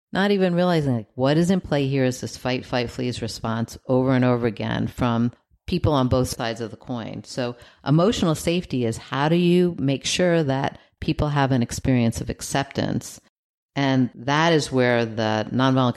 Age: 50-69